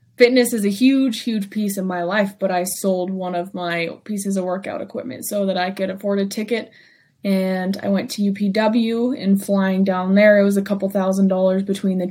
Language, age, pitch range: English, 20-39, 185-205 Hz